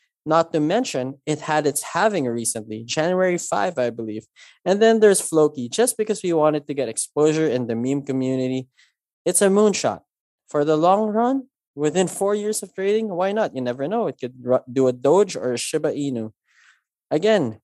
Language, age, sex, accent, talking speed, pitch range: English, 20-39, male, Filipino, 185 wpm, 135-180 Hz